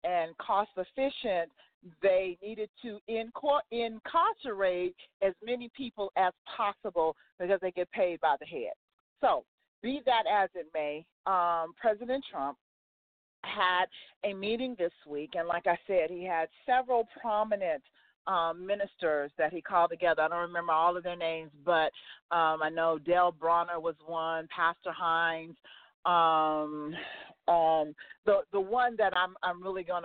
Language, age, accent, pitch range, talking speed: English, 40-59, American, 165-215 Hz, 145 wpm